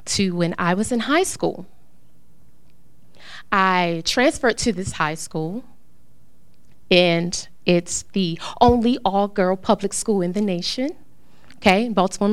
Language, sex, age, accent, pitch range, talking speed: English, female, 20-39, American, 175-235 Hz, 120 wpm